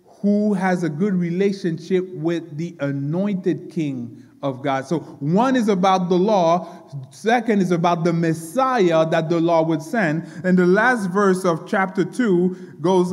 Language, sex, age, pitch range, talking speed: English, male, 30-49, 155-195 Hz, 160 wpm